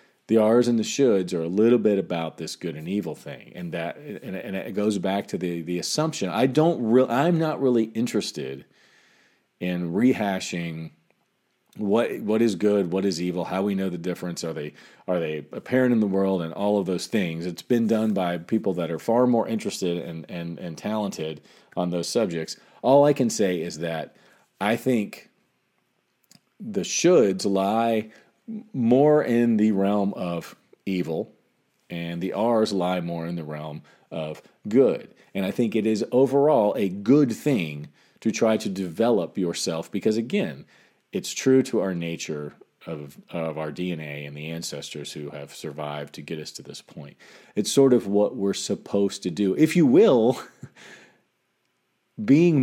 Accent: American